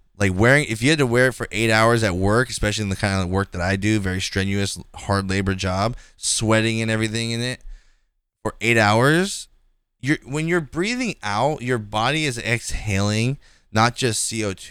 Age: 20-39